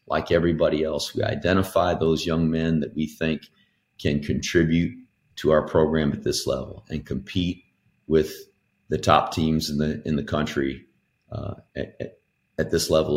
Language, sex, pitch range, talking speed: English, male, 75-90 Hz, 160 wpm